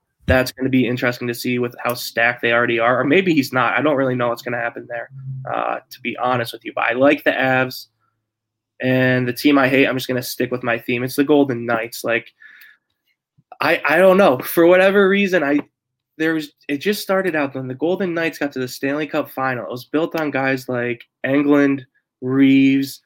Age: 20-39